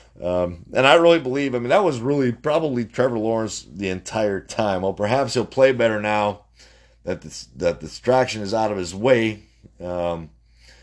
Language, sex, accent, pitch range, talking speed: English, male, American, 85-110 Hz, 185 wpm